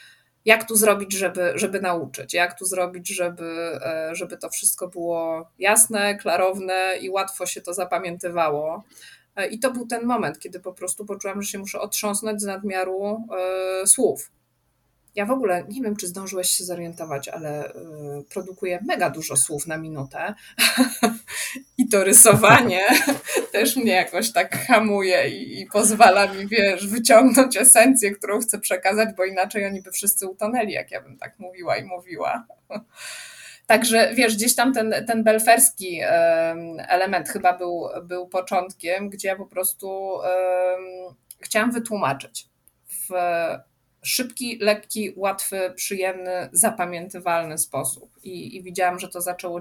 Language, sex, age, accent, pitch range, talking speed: Polish, female, 20-39, native, 175-210 Hz, 145 wpm